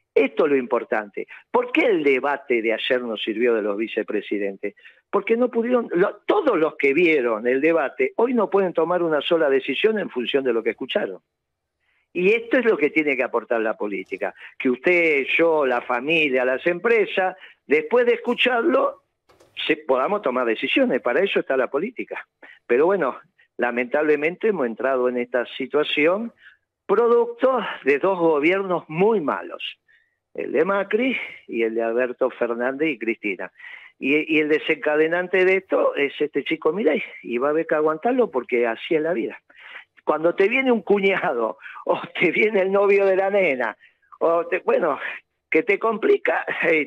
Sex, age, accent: male, 50-69, Argentinian